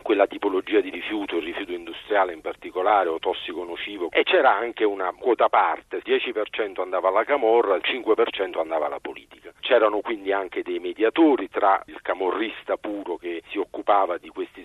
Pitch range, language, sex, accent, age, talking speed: 340-415 Hz, Italian, male, native, 40-59, 170 wpm